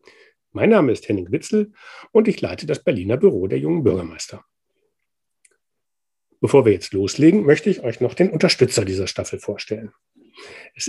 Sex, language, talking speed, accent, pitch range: male, German, 155 wpm, German, 115-185 Hz